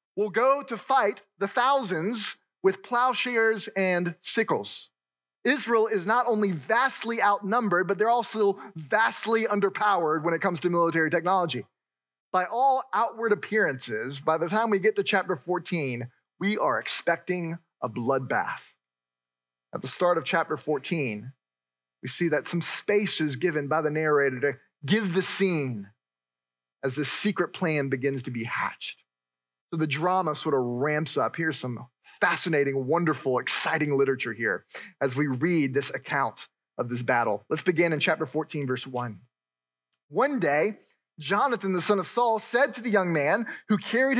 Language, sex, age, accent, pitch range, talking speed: English, male, 30-49, American, 135-210 Hz, 155 wpm